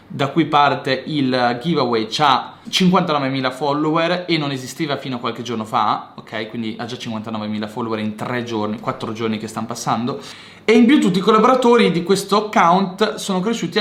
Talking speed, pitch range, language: 180 wpm, 120-165 Hz, Italian